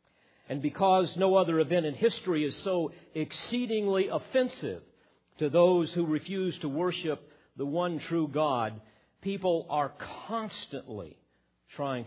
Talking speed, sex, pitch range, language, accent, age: 125 wpm, male, 130-185 Hz, English, American, 50-69